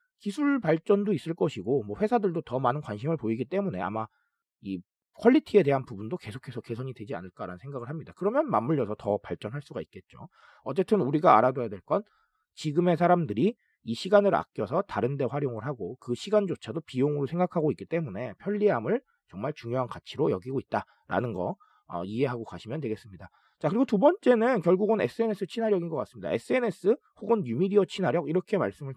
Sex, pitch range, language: male, 130-215 Hz, Korean